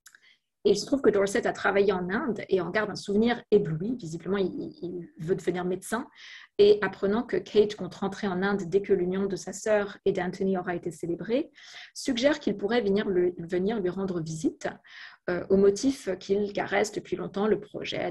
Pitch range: 180-210 Hz